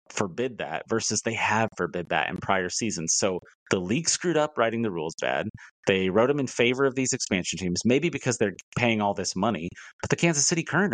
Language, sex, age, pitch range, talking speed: English, male, 30-49, 100-120 Hz, 220 wpm